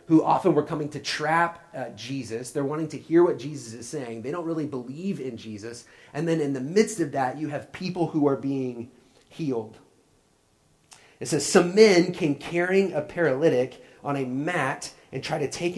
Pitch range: 115-160 Hz